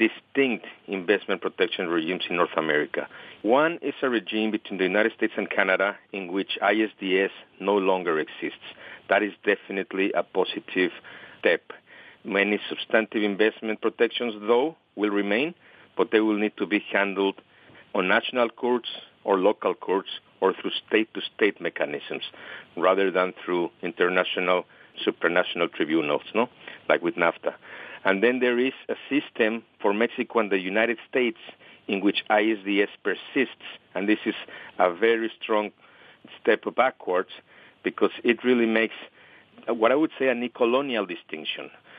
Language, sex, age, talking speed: English, male, 50-69, 140 wpm